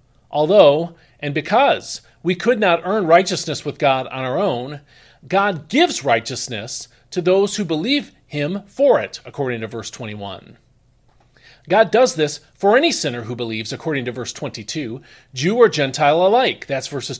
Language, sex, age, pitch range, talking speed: English, male, 40-59, 130-195 Hz, 155 wpm